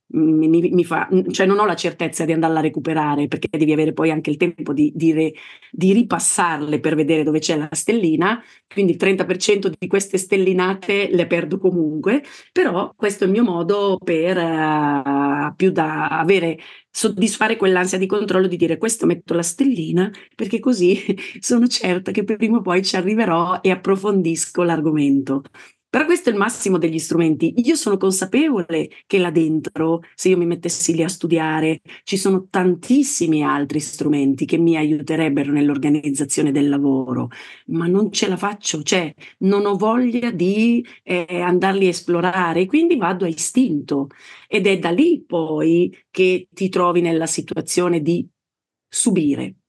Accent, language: native, Italian